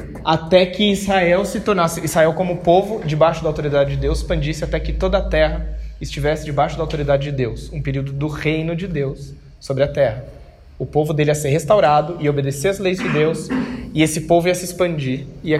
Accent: Brazilian